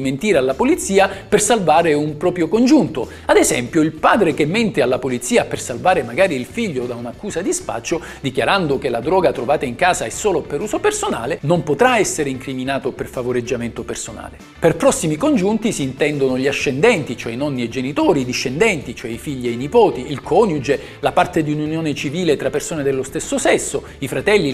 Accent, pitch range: native, 135-210 Hz